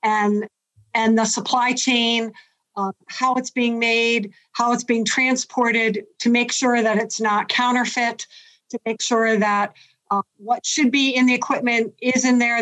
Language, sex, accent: English, female, American